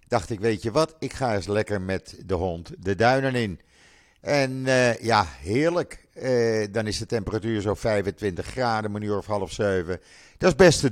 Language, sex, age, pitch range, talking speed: Dutch, male, 50-69, 100-125 Hz, 200 wpm